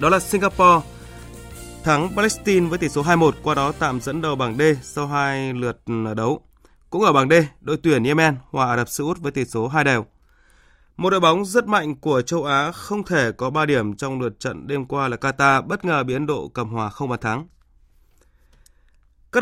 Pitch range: 125-165 Hz